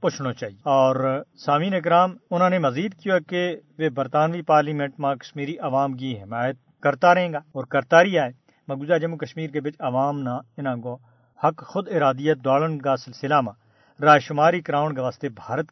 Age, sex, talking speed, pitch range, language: 50-69, male, 150 wpm, 130-160 Hz, Urdu